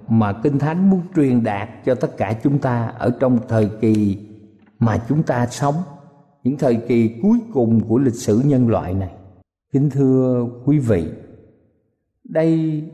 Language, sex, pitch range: Vietnamese, male, 115-170 Hz